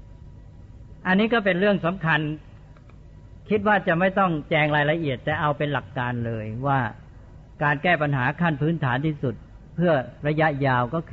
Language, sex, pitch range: Thai, female, 125-165 Hz